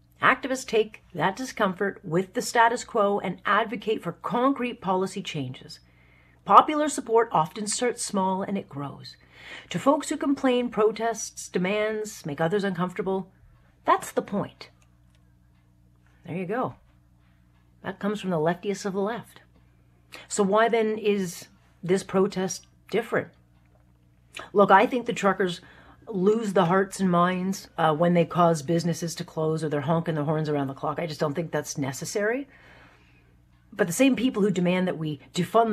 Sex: female